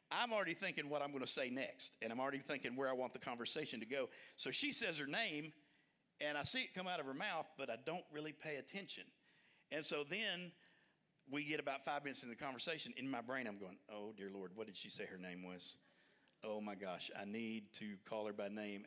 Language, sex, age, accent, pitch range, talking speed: English, male, 50-69, American, 110-170 Hz, 240 wpm